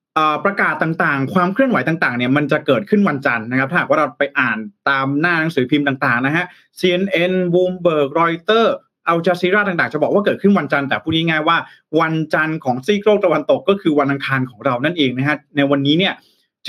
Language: Thai